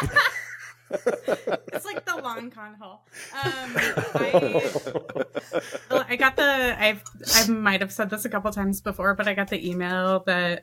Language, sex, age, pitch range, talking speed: English, female, 20-39, 175-225 Hz, 150 wpm